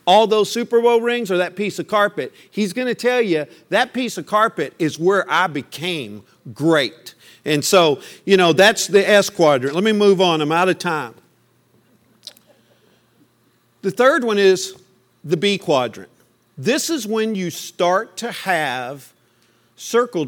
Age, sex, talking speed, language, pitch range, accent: 50-69, male, 165 wpm, English, 165-215 Hz, American